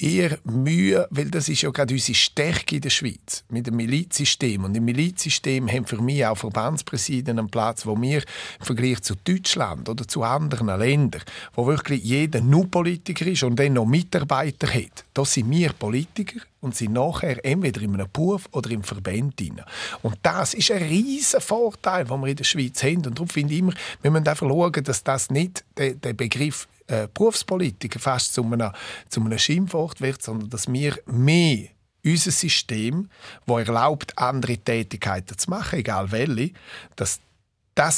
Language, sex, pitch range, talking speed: German, male, 115-160 Hz, 170 wpm